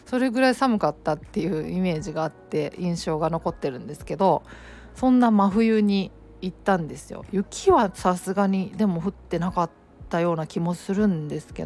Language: Japanese